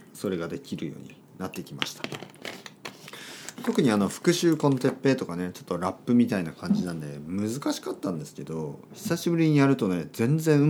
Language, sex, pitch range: Japanese, male, 90-150 Hz